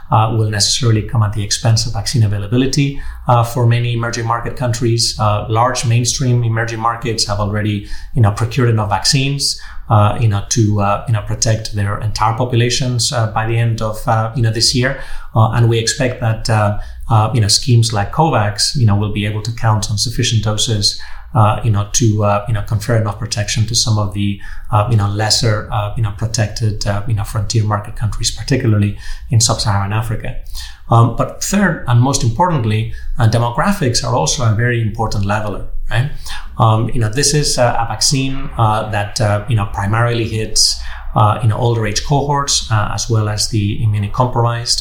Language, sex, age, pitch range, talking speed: English, male, 30-49, 105-120 Hz, 195 wpm